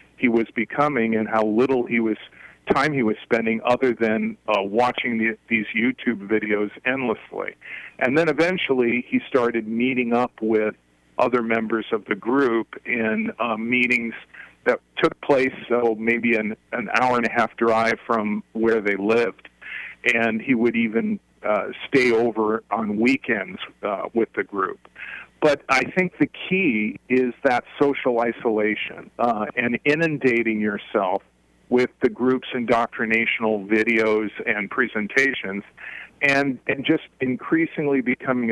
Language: English